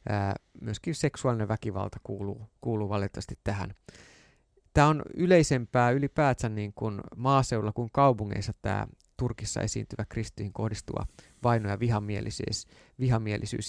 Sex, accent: male, native